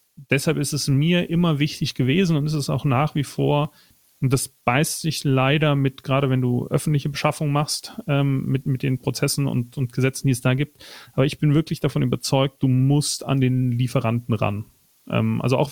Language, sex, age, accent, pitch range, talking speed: German, male, 40-59, German, 130-155 Hz, 200 wpm